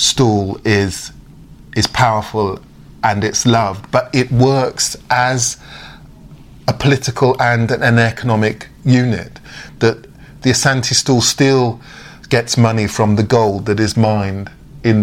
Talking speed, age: 125 wpm, 30-49